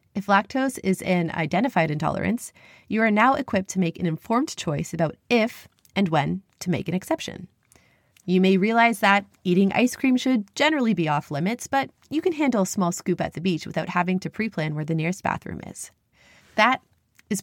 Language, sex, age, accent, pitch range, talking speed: English, female, 30-49, American, 175-245 Hz, 195 wpm